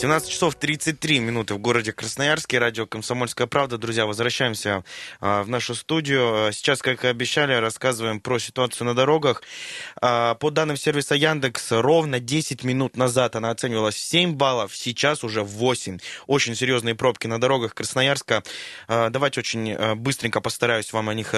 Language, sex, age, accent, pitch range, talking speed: Russian, male, 20-39, native, 115-135 Hz, 150 wpm